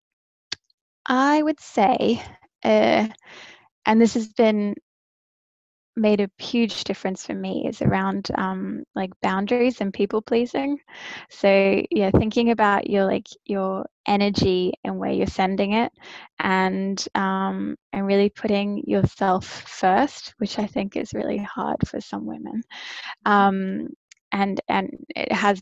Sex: female